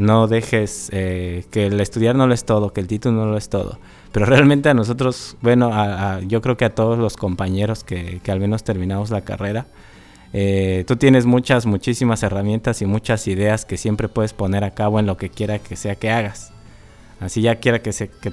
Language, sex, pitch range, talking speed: Spanish, male, 95-115 Hz, 220 wpm